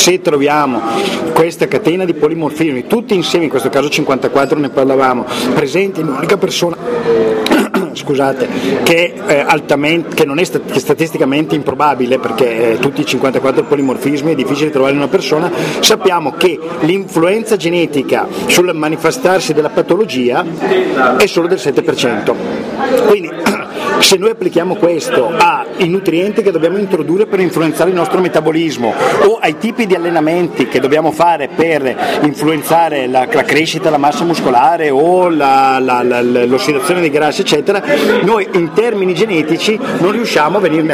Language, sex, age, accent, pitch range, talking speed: Italian, male, 40-59, native, 135-180 Hz, 140 wpm